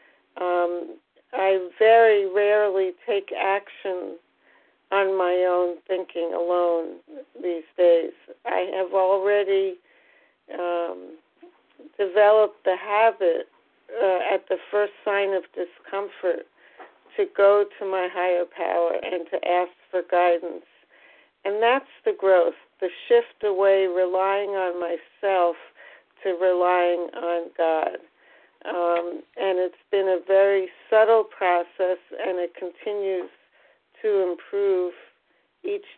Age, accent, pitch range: 50-69, American, 175-205 Hz